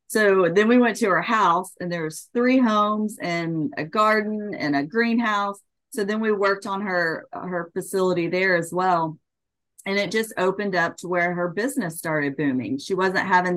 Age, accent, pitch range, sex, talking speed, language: 30-49, American, 155-190 Hz, female, 190 wpm, English